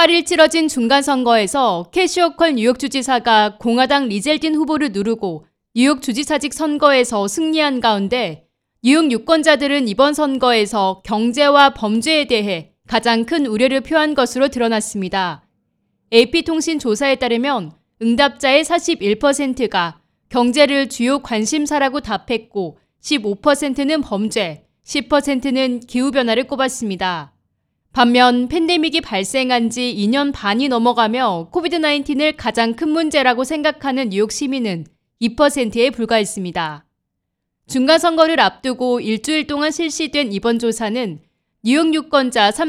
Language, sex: Korean, female